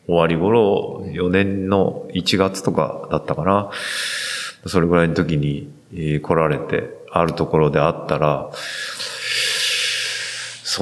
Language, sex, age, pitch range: Japanese, male, 20-39, 80-100 Hz